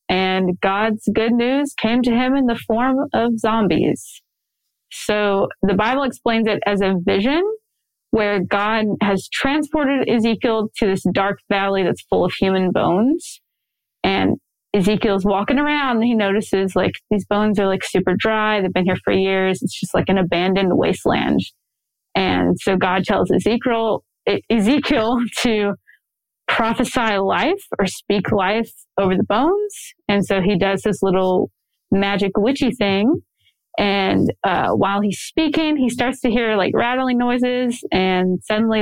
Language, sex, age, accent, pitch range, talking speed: English, female, 20-39, American, 195-240 Hz, 150 wpm